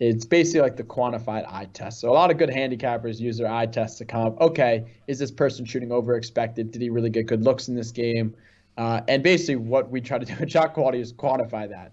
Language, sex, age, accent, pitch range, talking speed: English, male, 20-39, American, 110-125 Hz, 245 wpm